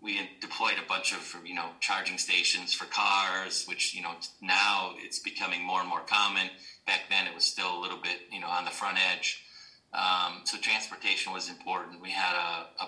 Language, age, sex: English, 30-49, male